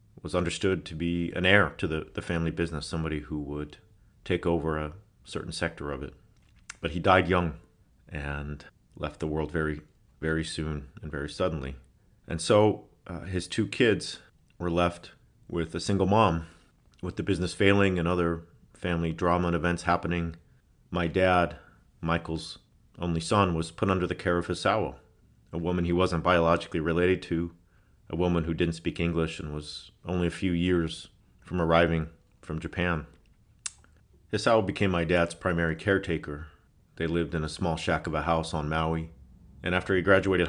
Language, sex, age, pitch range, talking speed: English, male, 40-59, 80-90 Hz, 170 wpm